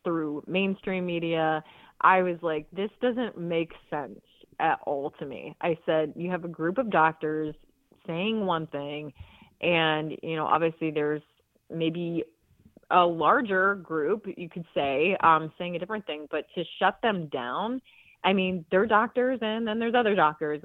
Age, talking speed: 20-39, 165 wpm